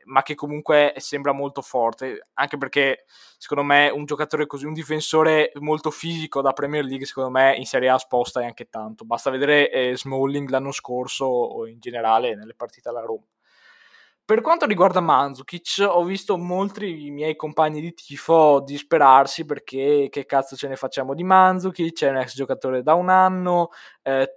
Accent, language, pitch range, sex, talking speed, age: native, Italian, 135-165 Hz, male, 170 wpm, 20-39